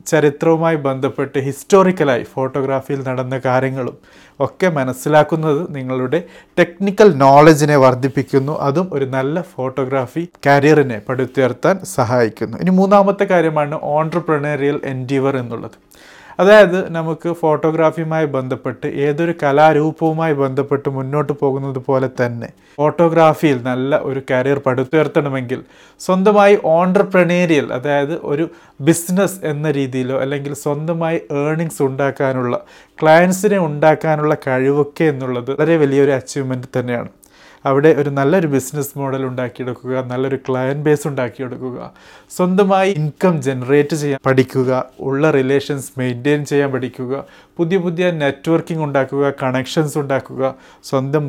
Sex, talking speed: male, 100 wpm